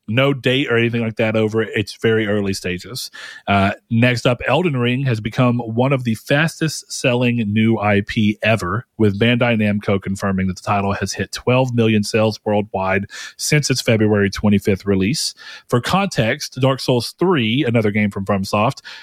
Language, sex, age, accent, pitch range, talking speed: English, male, 40-59, American, 105-135 Hz, 165 wpm